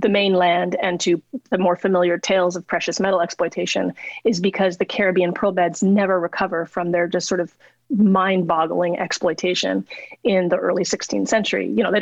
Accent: American